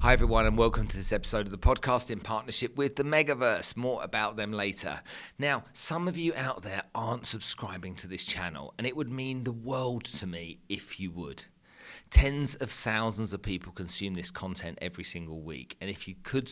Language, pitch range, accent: English, 90-115 Hz, British